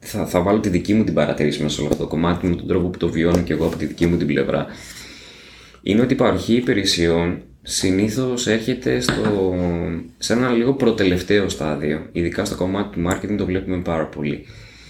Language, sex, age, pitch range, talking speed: Greek, male, 20-39, 85-125 Hz, 195 wpm